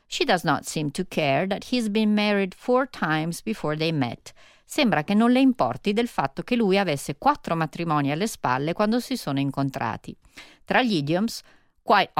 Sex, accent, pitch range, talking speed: female, native, 145-220 Hz, 180 wpm